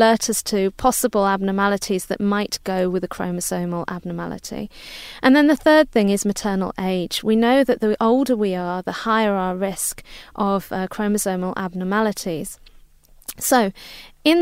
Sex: female